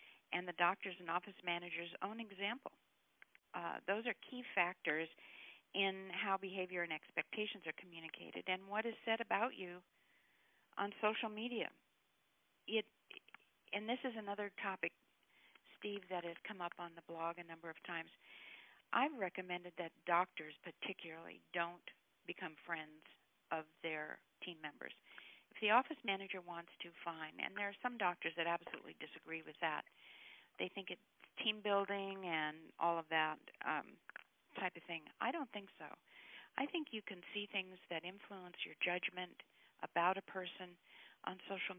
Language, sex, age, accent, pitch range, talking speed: English, female, 50-69, American, 170-210 Hz, 155 wpm